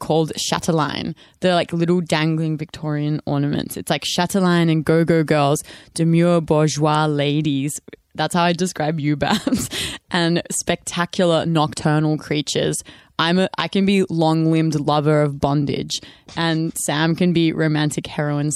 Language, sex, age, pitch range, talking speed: English, female, 20-39, 150-175 Hz, 135 wpm